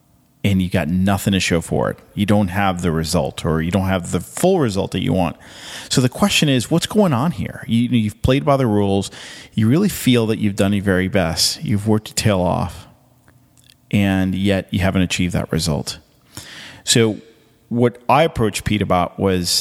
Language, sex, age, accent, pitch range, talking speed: English, male, 40-59, American, 95-125 Hz, 195 wpm